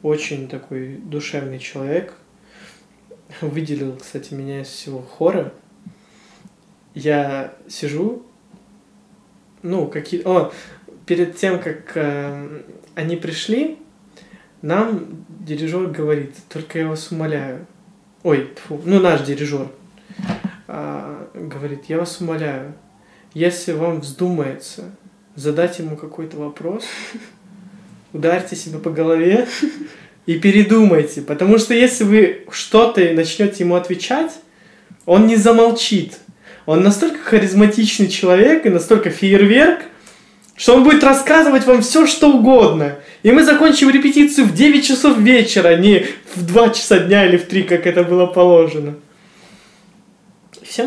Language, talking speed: Russian, 115 wpm